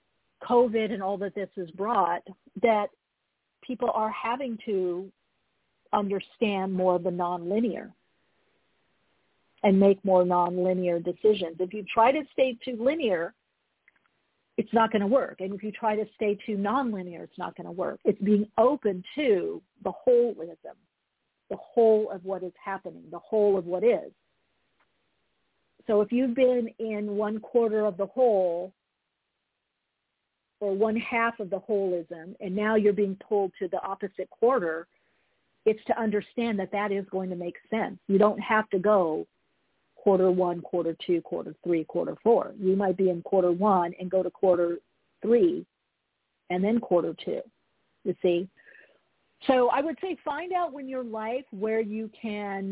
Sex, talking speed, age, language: female, 160 wpm, 50-69, English